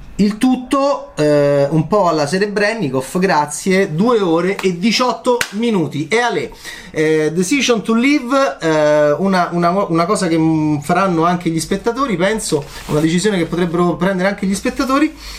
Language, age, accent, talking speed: Italian, 30-49, native, 150 wpm